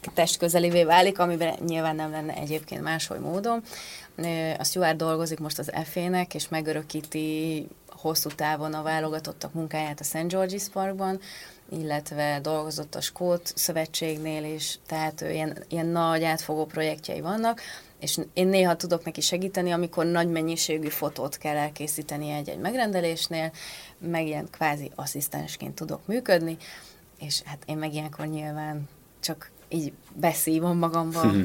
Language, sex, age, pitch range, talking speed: Hungarian, female, 30-49, 155-175 Hz, 130 wpm